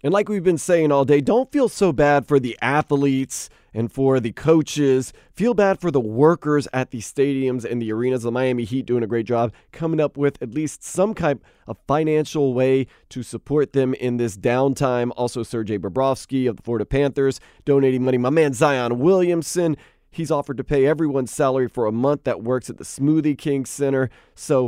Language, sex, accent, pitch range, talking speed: English, male, American, 125-155 Hz, 200 wpm